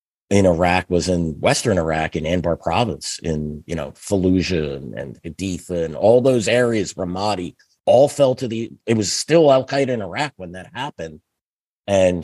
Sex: male